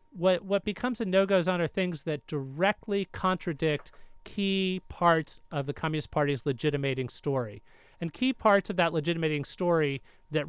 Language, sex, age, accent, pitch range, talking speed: English, male, 40-59, American, 145-185 Hz, 150 wpm